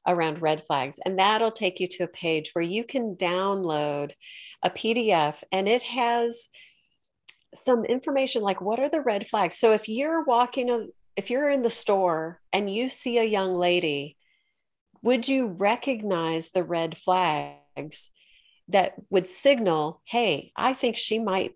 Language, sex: English, female